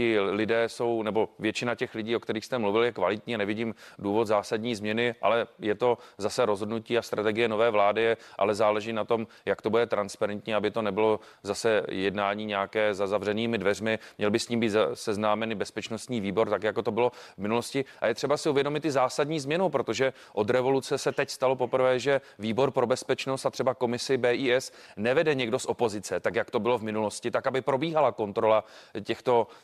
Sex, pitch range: male, 110-135 Hz